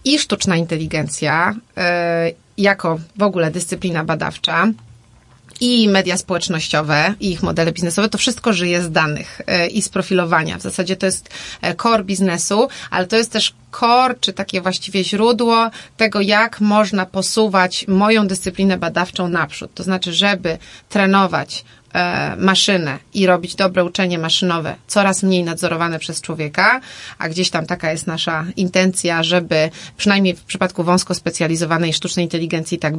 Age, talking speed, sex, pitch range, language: 30-49, 140 wpm, female, 165-200 Hz, Polish